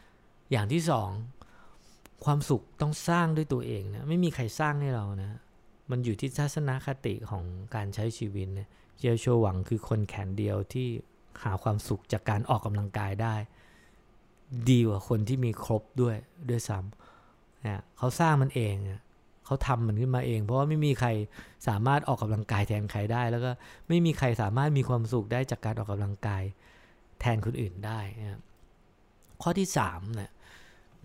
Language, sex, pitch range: English, male, 105-130 Hz